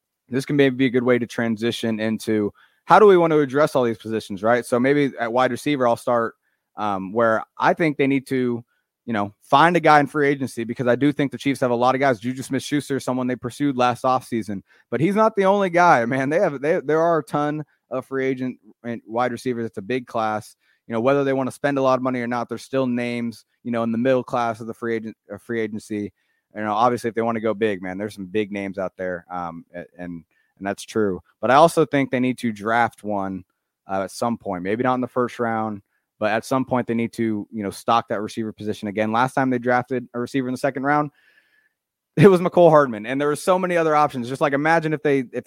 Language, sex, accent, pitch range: English, male, American, 110-140 Hz